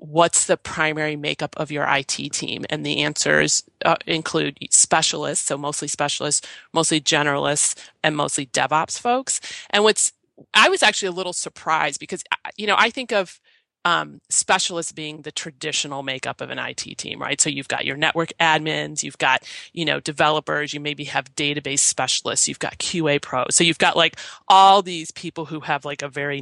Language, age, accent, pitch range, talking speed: English, 30-49, American, 145-190 Hz, 180 wpm